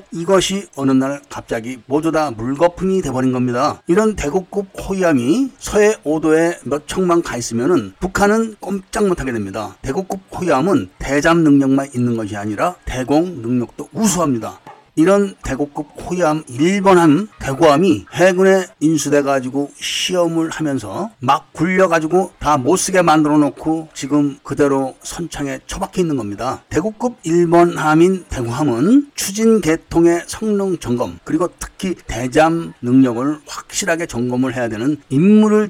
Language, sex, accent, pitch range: Korean, male, native, 130-180 Hz